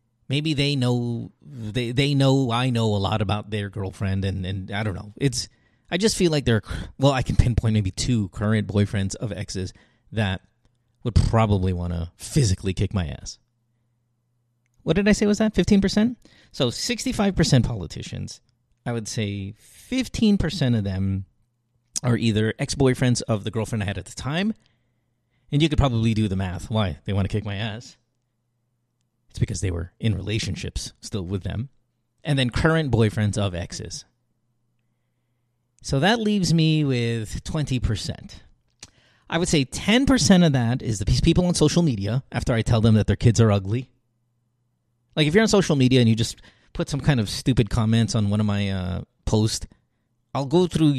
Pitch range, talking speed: 105-130 Hz, 175 wpm